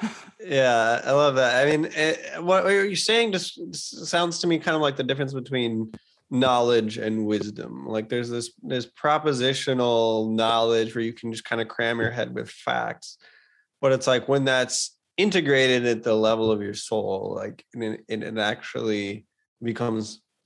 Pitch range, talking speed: 110-130 Hz, 175 wpm